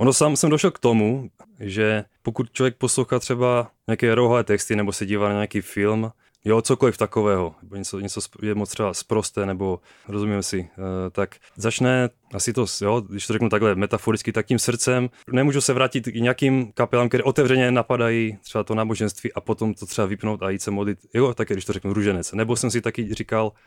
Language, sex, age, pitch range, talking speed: Czech, male, 20-39, 105-130 Hz, 195 wpm